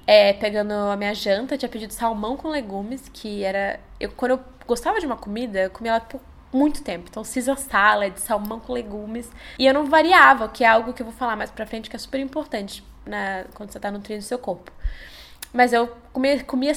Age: 10-29